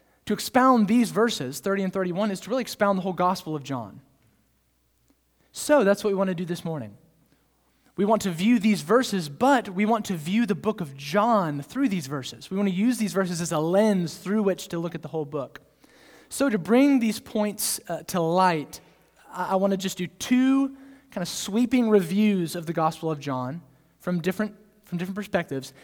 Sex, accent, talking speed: male, American, 205 wpm